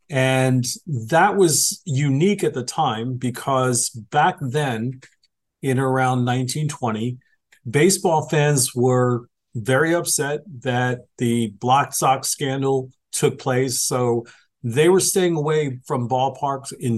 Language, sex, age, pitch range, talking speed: English, male, 40-59, 125-150 Hz, 115 wpm